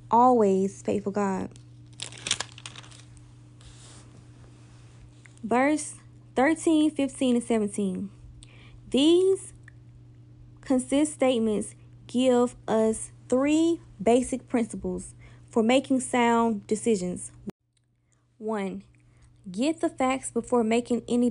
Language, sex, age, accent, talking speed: English, female, 20-39, American, 75 wpm